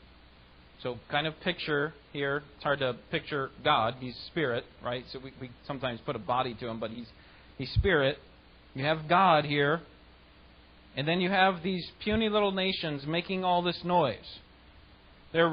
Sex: male